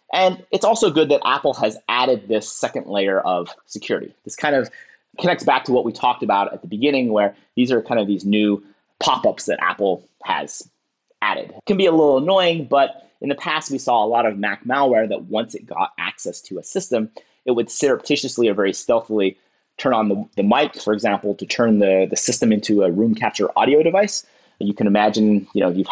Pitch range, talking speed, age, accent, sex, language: 100-135 Hz, 215 wpm, 30-49, American, male, English